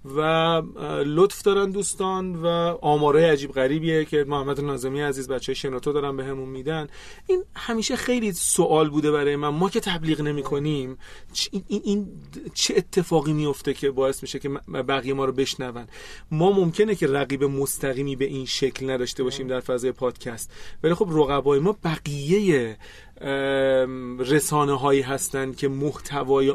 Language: Persian